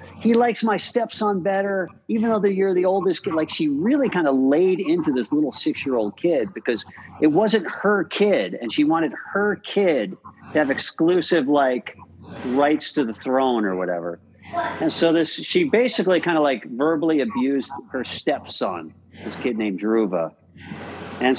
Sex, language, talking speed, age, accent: male, English, 165 wpm, 50-69, American